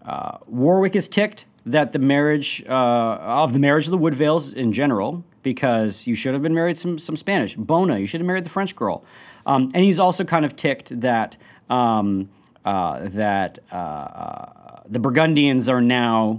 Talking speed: 180 wpm